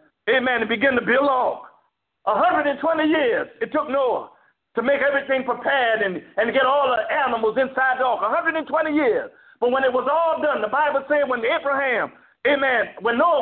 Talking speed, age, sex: 185 wpm, 50-69, male